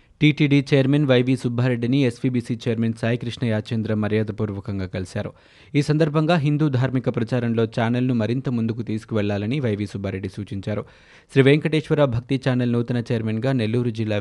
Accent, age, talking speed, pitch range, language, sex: native, 20-39, 125 wpm, 105-130 Hz, Telugu, male